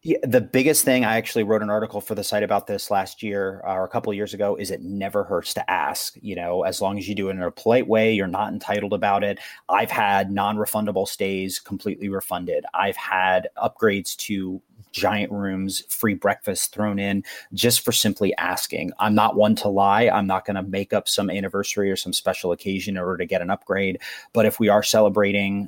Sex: male